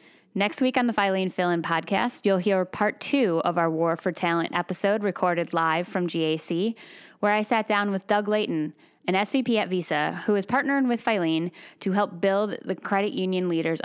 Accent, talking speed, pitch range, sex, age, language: American, 195 wpm, 175-220 Hz, female, 10-29, English